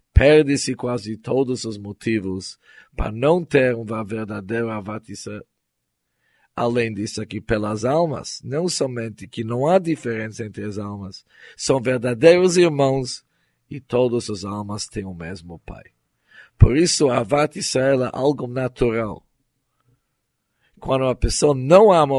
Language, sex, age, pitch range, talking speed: German, male, 50-69, 110-135 Hz, 125 wpm